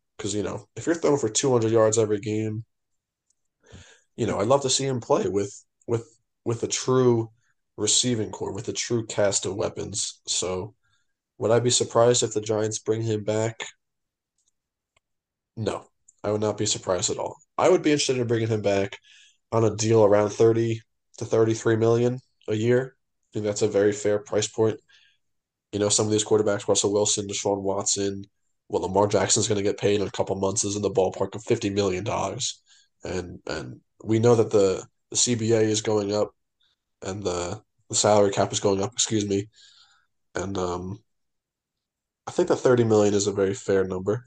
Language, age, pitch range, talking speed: English, 20-39, 105-120 Hz, 190 wpm